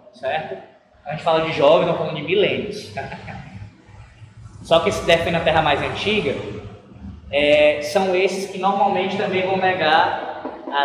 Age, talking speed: 20-39, 155 wpm